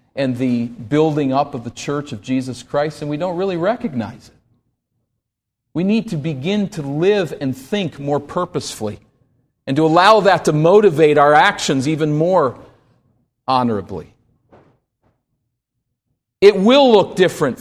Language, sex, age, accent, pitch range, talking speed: English, male, 50-69, American, 125-170 Hz, 140 wpm